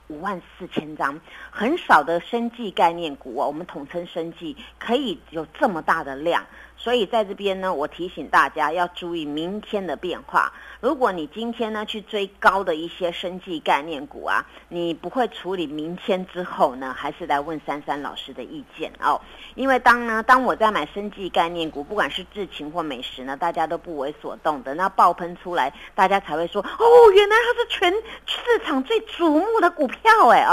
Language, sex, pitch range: Chinese, female, 170-230 Hz